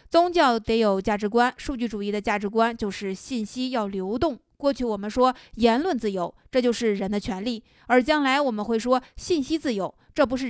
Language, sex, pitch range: Chinese, female, 205-260 Hz